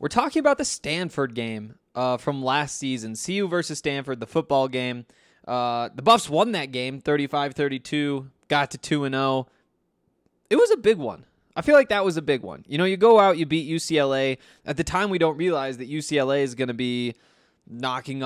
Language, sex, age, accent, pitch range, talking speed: English, male, 20-39, American, 130-175 Hz, 200 wpm